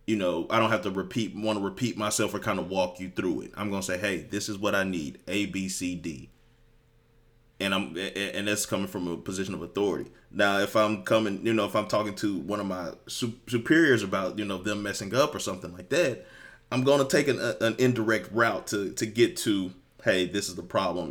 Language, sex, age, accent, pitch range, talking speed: English, male, 30-49, American, 95-115 Hz, 235 wpm